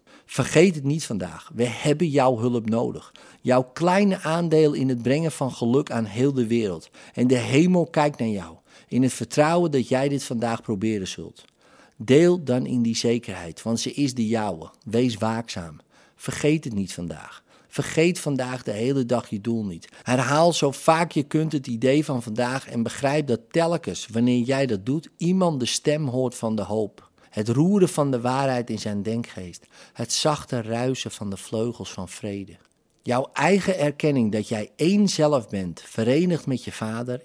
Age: 50-69